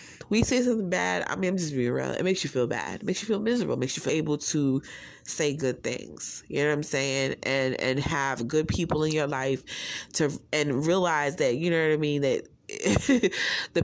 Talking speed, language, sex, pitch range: 230 wpm, English, female, 135-180 Hz